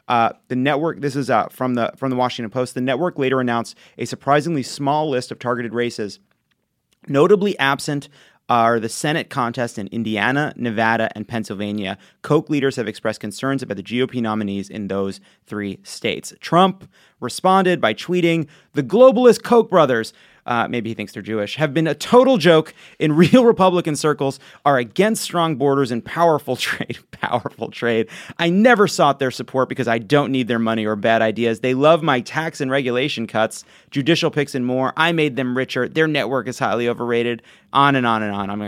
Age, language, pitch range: 30-49, English, 115-155 Hz